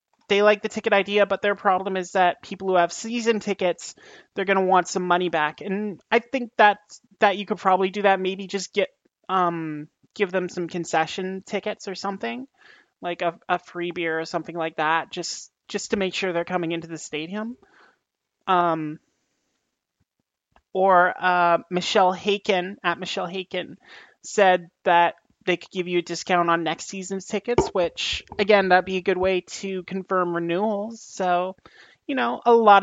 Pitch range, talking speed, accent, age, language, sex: 180-205 Hz, 175 wpm, American, 30-49, English, male